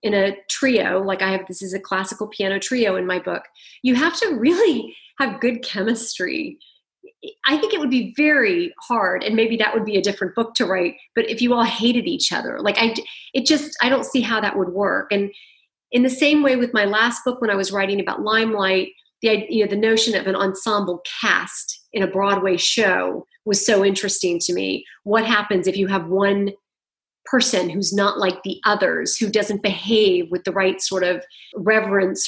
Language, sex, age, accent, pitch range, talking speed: English, female, 30-49, American, 195-250 Hz, 205 wpm